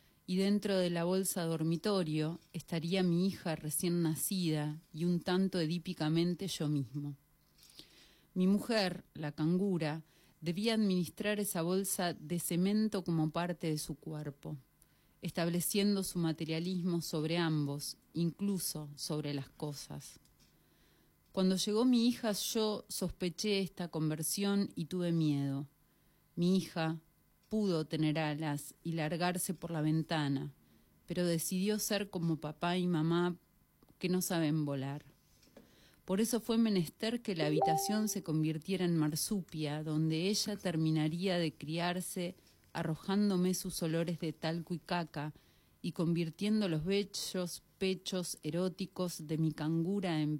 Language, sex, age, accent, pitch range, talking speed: Spanish, female, 30-49, Argentinian, 155-190 Hz, 125 wpm